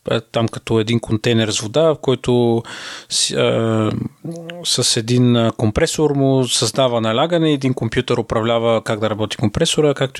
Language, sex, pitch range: Bulgarian, male, 115-150 Hz